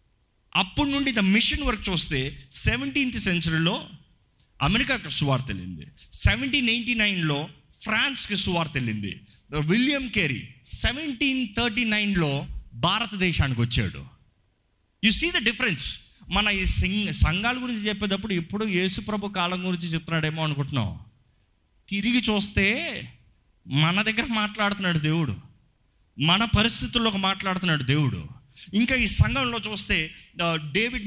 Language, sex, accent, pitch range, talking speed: Telugu, male, native, 145-220 Hz, 100 wpm